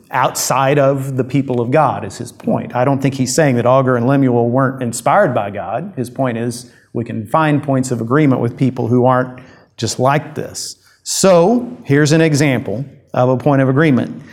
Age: 50-69